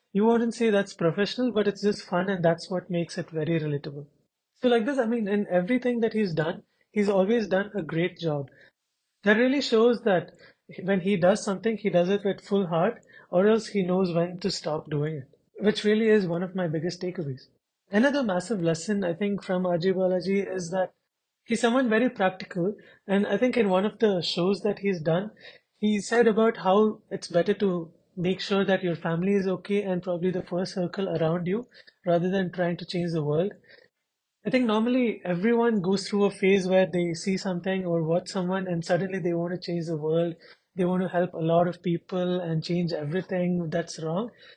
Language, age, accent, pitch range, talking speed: English, 30-49, Indian, 175-205 Hz, 205 wpm